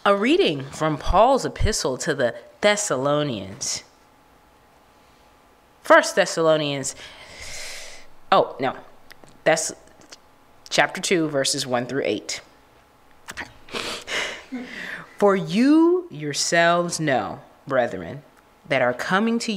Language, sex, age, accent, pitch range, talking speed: English, female, 20-39, American, 135-195 Hz, 85 wpm